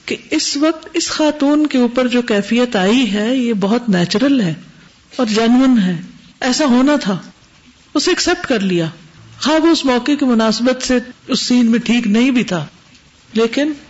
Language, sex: Urdu, female